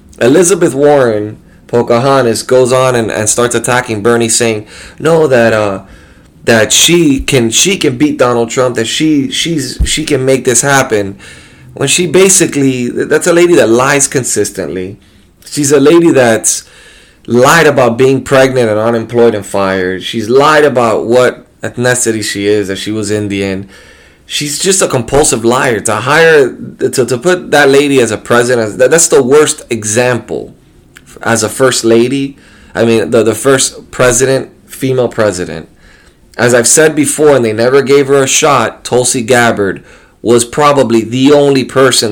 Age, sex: 20-39, male